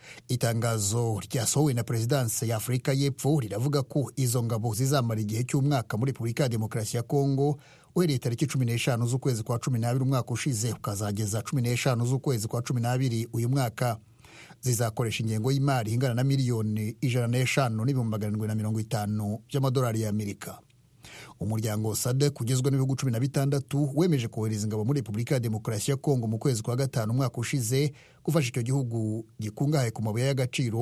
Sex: male